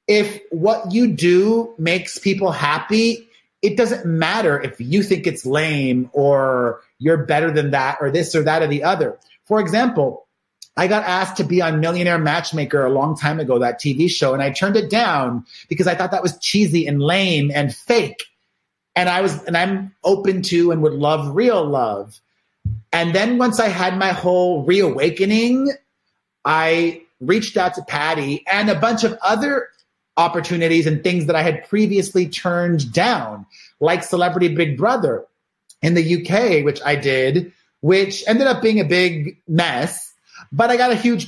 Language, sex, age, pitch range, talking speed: English, male, 30-49, 155-205 Hz, 175 wpm